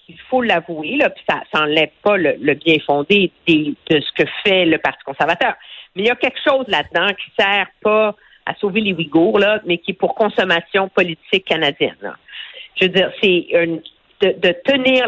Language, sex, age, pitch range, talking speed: French, female, 50-69, 180-255 Hz, 200 wpm